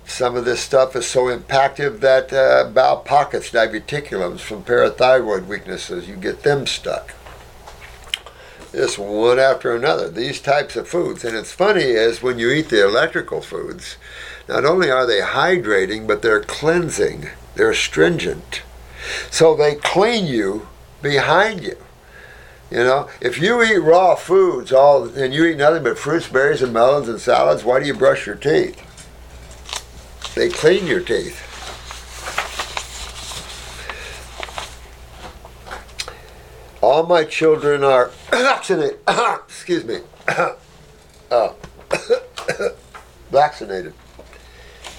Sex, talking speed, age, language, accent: male, 120 wpm, 60-79, English, American